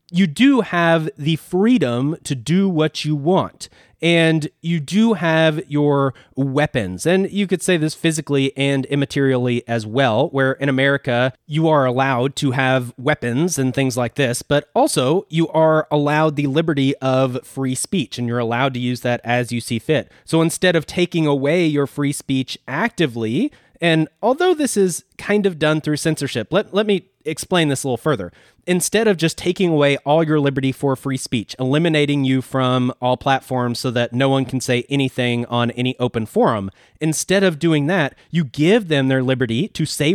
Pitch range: 125-165 Hz